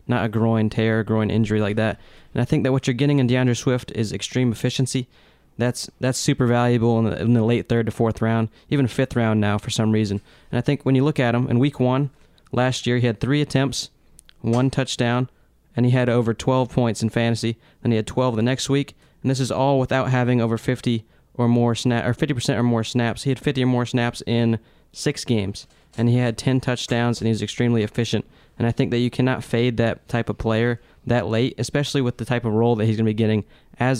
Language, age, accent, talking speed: English, 20-39, American, 240 wpm